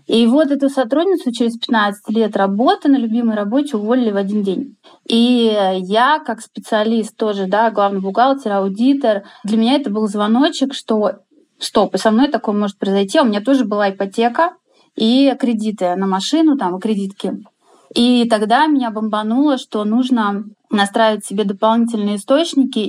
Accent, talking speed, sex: native, 150 wpm, female